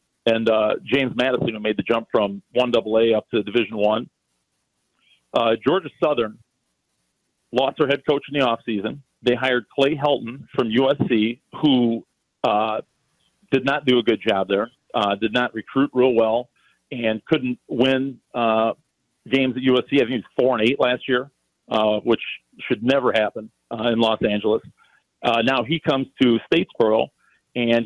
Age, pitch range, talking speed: 40-59, 115-135 Hz, 165 wpm